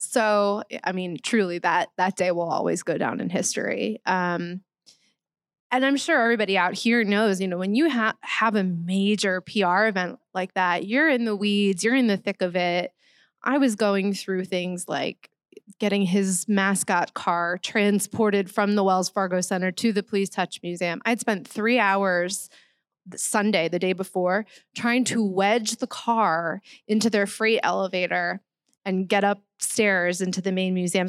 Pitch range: 185-225 Hz